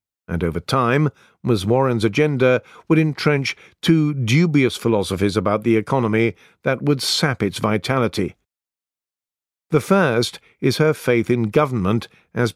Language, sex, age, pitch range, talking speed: English, male, 50-69, 115-145 Hz, 130 wpm